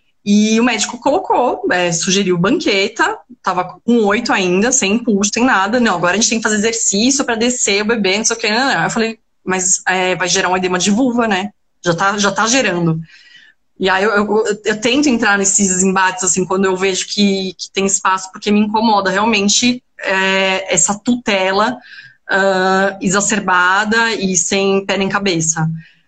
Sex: female